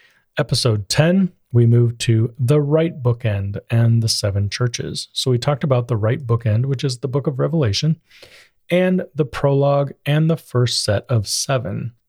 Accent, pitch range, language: American, 110-140 Hz, English